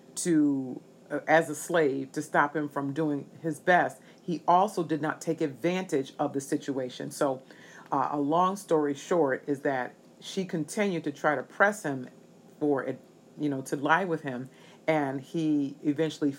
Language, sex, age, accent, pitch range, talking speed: English, female, 40-59, American, 140-175 Hz, 170 wpm